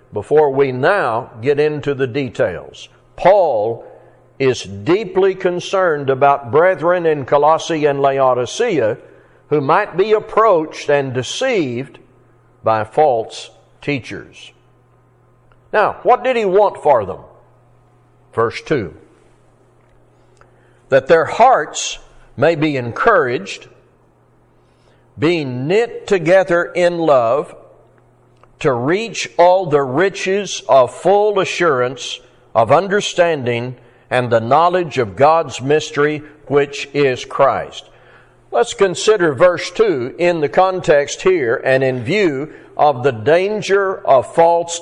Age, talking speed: 60-79, 110 wpm